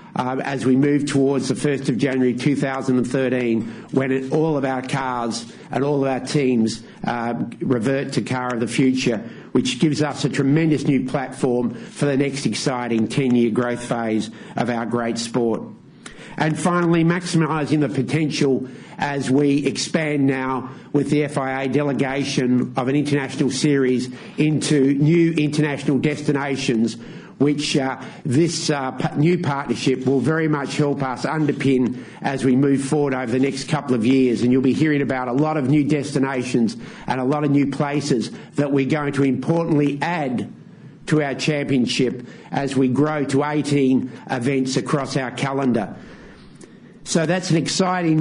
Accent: Australian